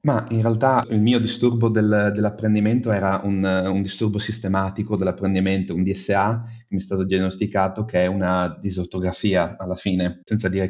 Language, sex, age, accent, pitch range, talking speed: Italian, male, 30-49, native, 95-105 Hz, 155 wpm